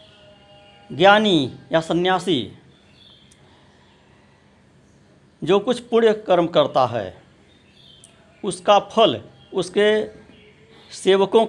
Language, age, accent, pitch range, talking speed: Hindi, 60-79, native, 125-200 Hz, 70 wpm